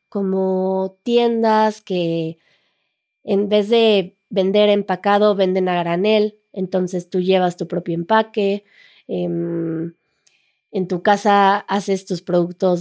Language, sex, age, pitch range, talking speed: Spanish, female, 20-39, 180-210 Hz, 110 wpm